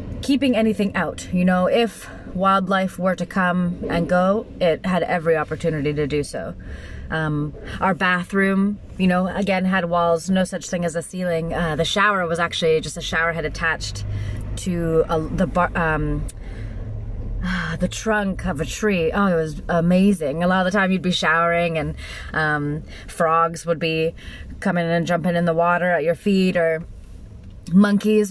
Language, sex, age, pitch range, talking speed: English, female, 30-49, 160-190 Hz, 175 wpm